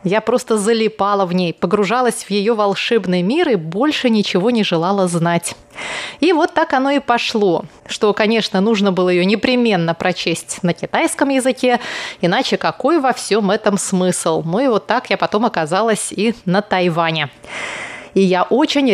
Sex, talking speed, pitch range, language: female, 160 wpm, 185-245 Hz, Russian